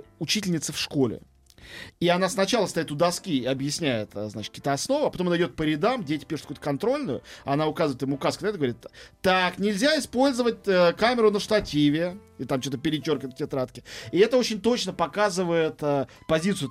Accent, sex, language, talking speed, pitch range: native, male, Russian, 170 wpm, 140-185 Hz